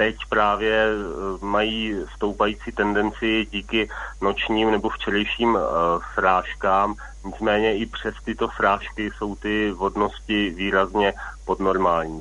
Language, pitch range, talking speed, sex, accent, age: Czech, 95-105 Hz, 100 wpm, male, native, 30-49